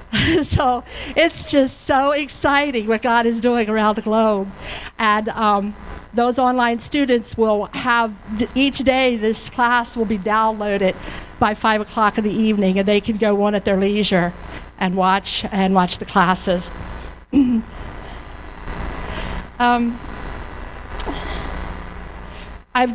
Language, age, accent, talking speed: English, 50-69, American, 130 wpm